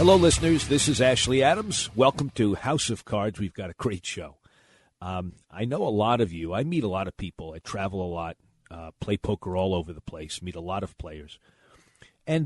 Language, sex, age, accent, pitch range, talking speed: English, male, 40-59, American, 95-140 Hz, 220 wpm